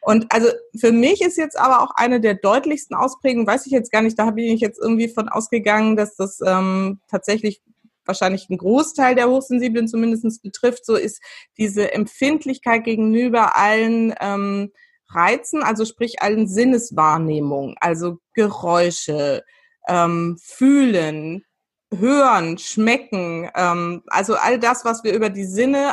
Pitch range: 210-255 Hz